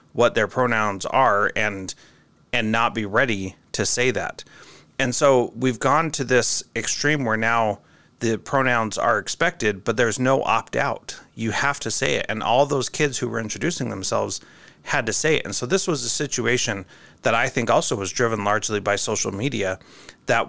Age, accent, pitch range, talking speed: 30-49, American, 100-125 Hz, 185 wpm